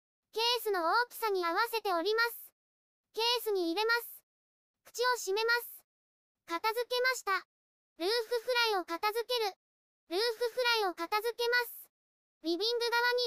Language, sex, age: Japanese, male, 20-39